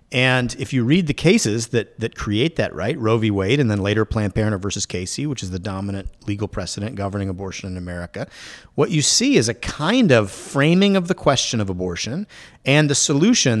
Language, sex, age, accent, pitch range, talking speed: English, male, 40-59, American, 105-135 Hz, 205 wpm